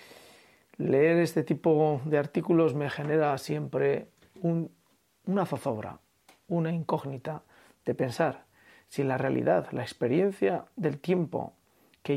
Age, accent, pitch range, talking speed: 40-59, Spanish, 120-165 Hz, 110 wpm